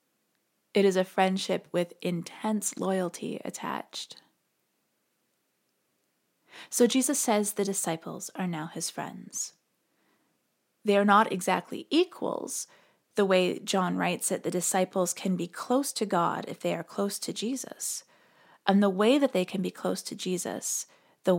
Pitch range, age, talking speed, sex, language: 195-250 Hz, 20-39, 145 wpm, female, English